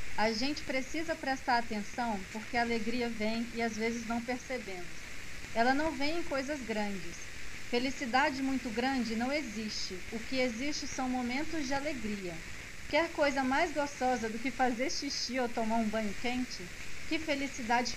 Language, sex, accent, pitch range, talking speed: Portuguese, female, Brazilian, 220-270 Hz, 155 wpm